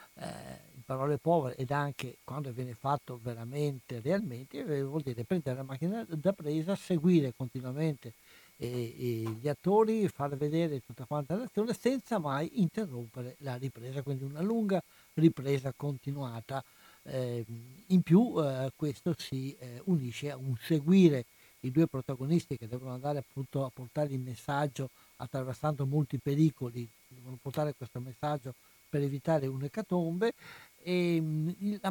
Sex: male